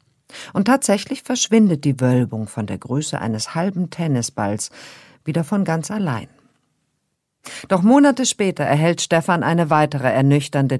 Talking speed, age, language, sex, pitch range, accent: 130 wpm, 50-69, German, female, 125-190 Hz, German